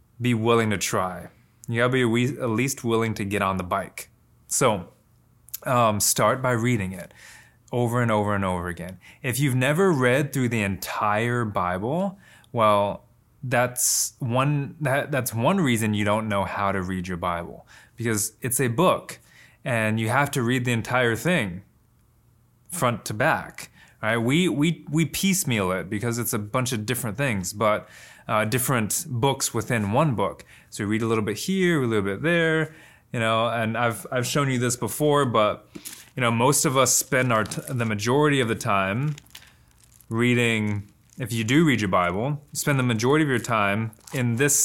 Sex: male